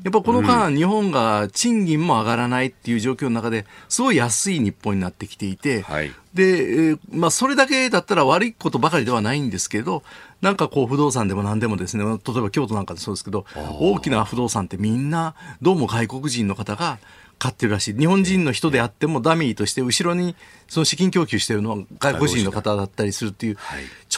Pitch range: 110-175 Hz